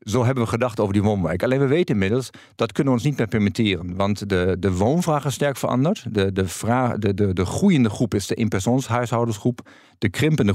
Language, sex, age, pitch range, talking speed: Dutch, male, 50-69, 105-125 Hz, 215 wpm